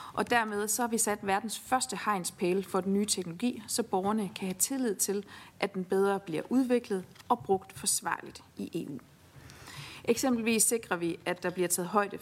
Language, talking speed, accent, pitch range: Danish, 180 wpm, native, 185-225 Hz